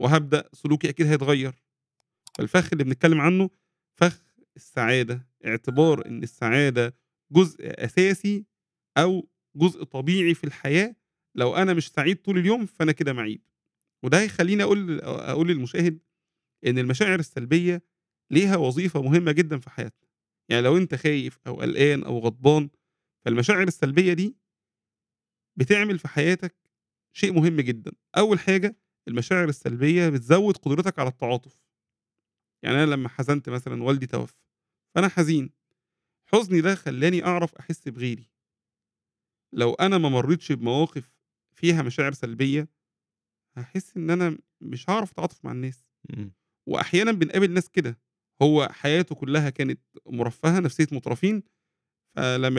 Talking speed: 125 wpm